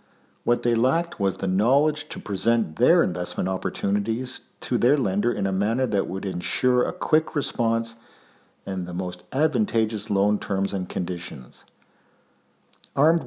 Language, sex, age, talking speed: English, male, 50-69, 145 wpm